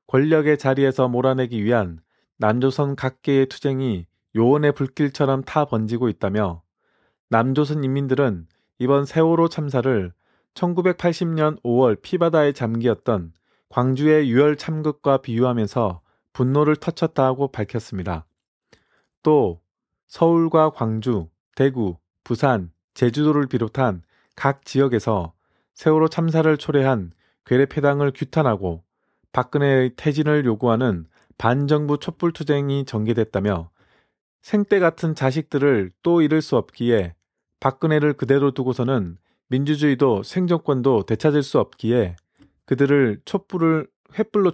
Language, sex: Korean, male